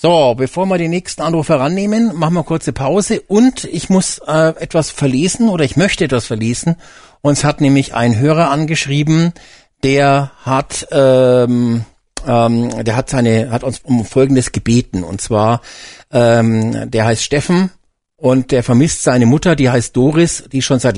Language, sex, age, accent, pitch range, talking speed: German, male, 50-69, German, 125-160 Hz, 165 wpm